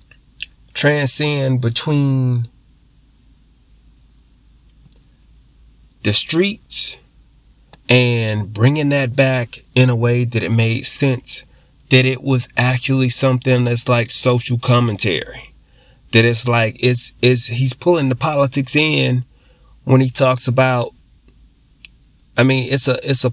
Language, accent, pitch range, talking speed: English, American, 115-130 Hz, 115 wpm